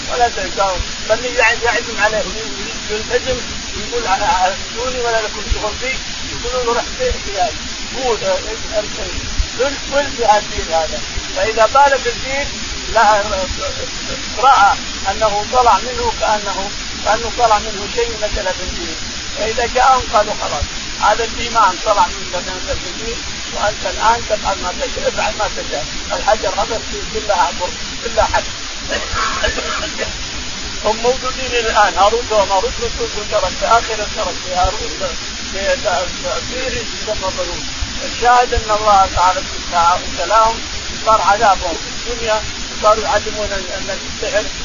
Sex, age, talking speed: male, 50-69, 130 wpm